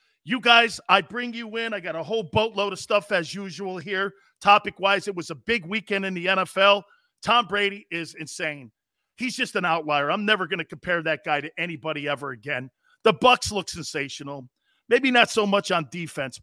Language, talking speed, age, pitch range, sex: English, 195 wpm, 40-59, 155-215 Hz, male